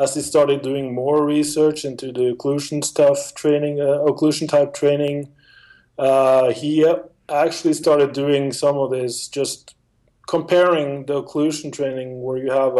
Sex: male